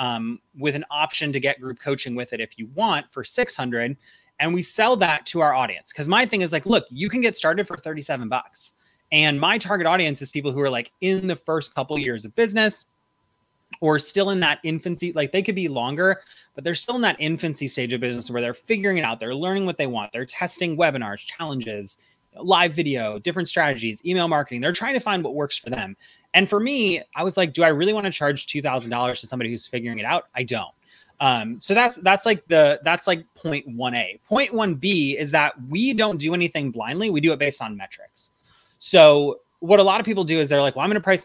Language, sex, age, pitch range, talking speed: English, male, 20-39, 130-185 Hz, 235 wpm